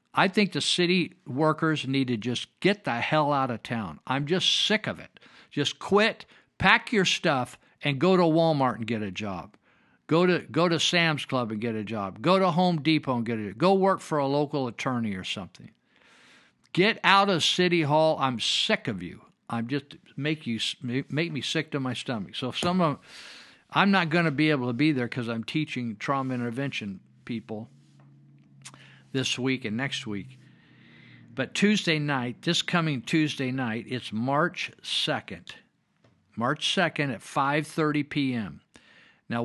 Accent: American